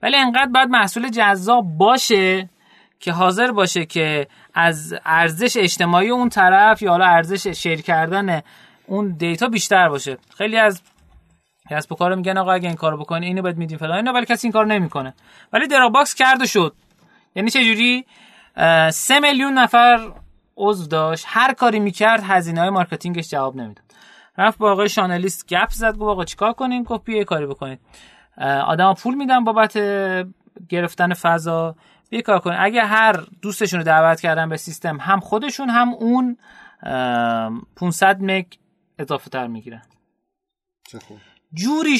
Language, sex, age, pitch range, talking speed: Persian, male, 30-49, 160-220 Hz, 145 wpm